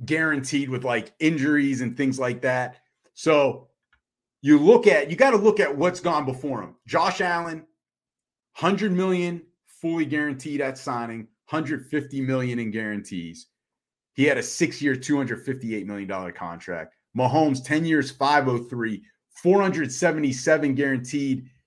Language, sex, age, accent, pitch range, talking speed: English, male, 30-49, American, 130-180 Hz, 130 wpm